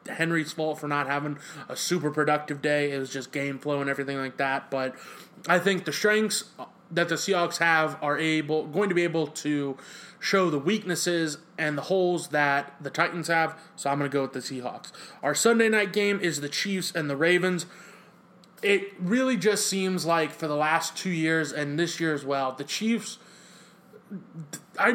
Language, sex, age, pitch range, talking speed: English, male, 20-39, 150-185 Hz, 190 wpm